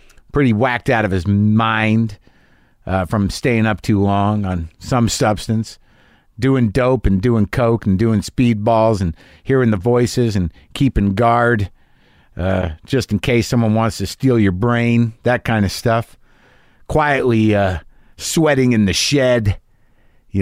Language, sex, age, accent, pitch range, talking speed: English, male, 50-69, American, 100-125 Hz, 155 wpm